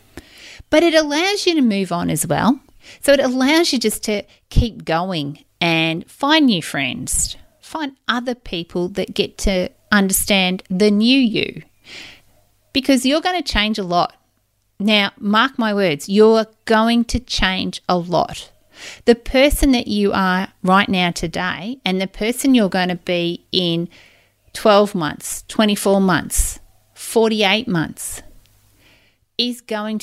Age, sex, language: 30-49, female, English